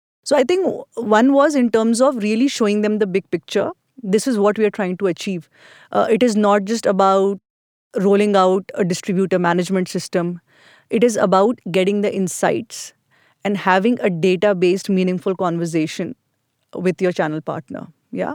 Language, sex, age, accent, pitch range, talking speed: English, female, 20-39, Indian, 185-225 Hz, 165 wpm